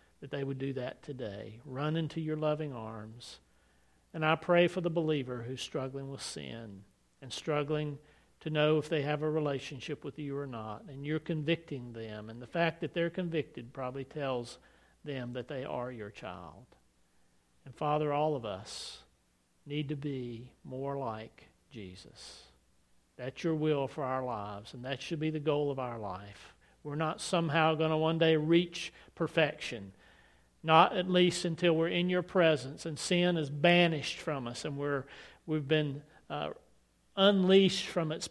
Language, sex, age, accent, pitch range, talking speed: English, male, 50-69, American, 115-155 Hz, 170 wpm